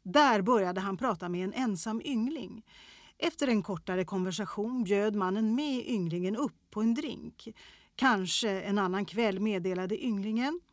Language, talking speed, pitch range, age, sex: Swedish, 145 wpm, 190-245 Hz, 40-59, female